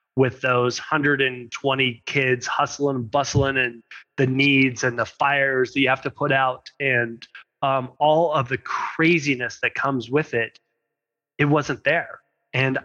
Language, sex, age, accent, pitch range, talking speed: English, male, 30-49, American, 130-165 Hz, 155 wpm